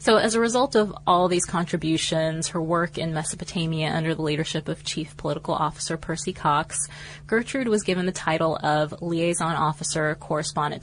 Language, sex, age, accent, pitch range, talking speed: English, female, 20-39, American, 150-180 Hz, 165 wpm